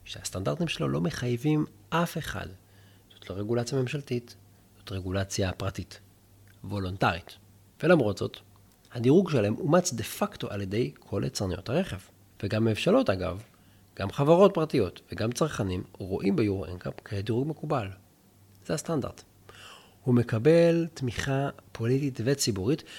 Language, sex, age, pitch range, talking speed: Hebrew, male, 40-59, 100-150 Hz, 120 wpm